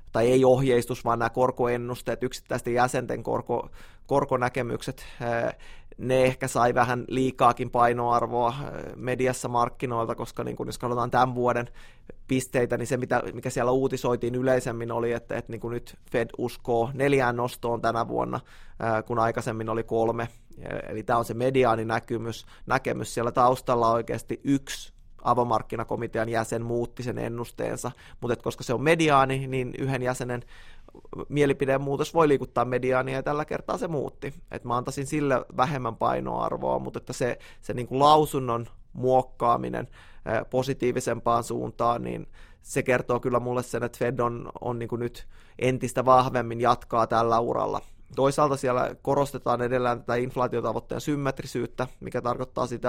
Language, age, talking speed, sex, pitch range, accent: Finnish, 20-39, 135 wpm, male, 115-130 Hz, native